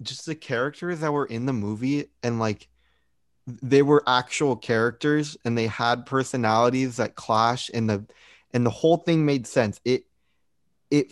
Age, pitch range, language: 20-39, 115-140 Hz, English